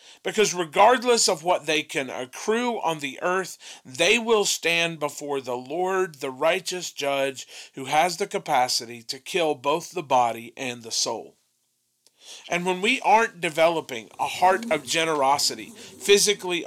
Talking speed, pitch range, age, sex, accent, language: 150 wpm, 145-205 Hz, 40-59, male, American, English